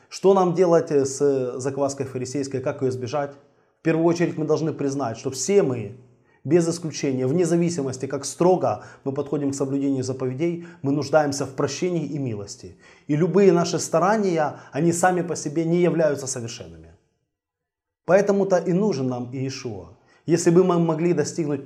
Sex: male